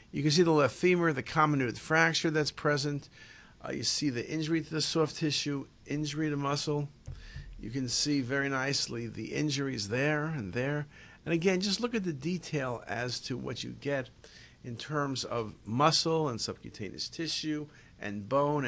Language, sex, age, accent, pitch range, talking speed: English, male, 50-69, American, 120-155 Hz, 175 wpm